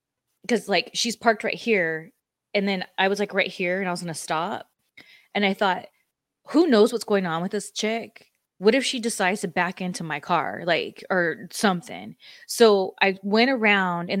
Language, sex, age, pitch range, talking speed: English, female, 20-39, 180-215 Hz, 200 wpm